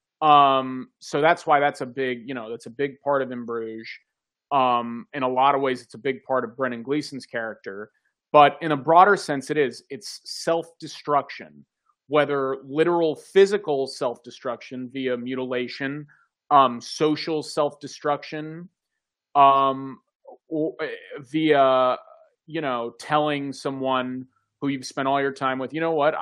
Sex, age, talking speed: male, 30-49, 150 wpm